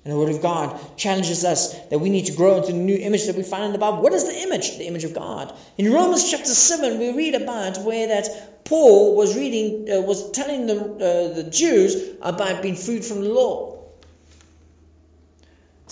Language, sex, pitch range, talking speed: English, male, 195-310 Hz, 210 wpm